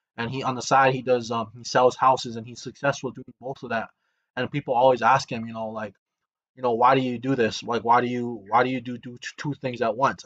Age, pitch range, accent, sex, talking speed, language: 20-39, 120-135 Hz, American, male, 270 wpm, English